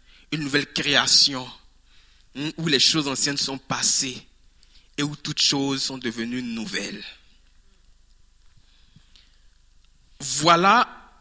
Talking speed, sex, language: 90 wpm, male, French